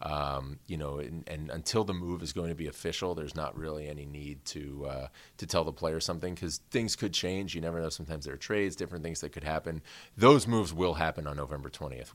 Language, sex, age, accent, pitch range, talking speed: English, male, 30-49, American, 75-90 Hz, 235 wpm